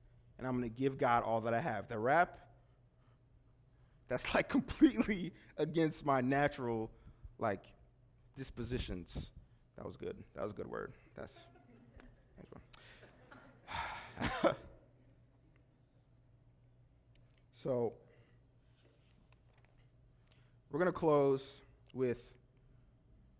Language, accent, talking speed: English, American, 90 wpm